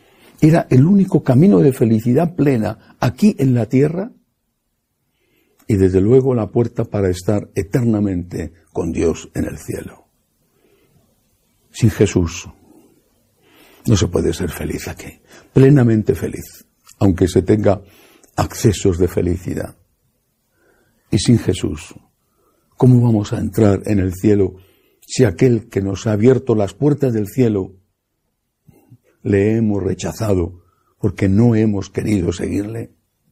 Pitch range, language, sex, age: 100-125 Hz, Spanish, male, 60-79